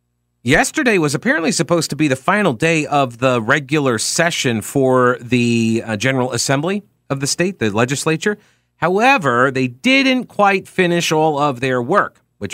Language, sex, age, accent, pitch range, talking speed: English, male, 40-59, American, 110-165 Hz, 155 wpm